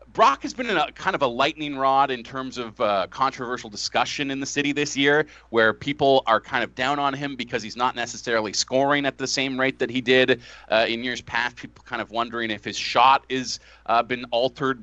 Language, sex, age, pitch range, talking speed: English, male, 30-49, 120-155 Hz, 225 wpm